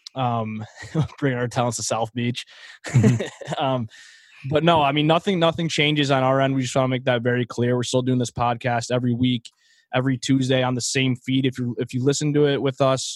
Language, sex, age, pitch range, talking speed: English, male, 20-39, 120-135 Hz, 220 wpm